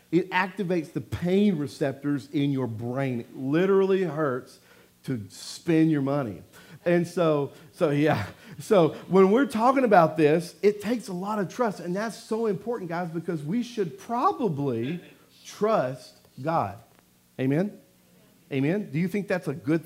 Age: 40-59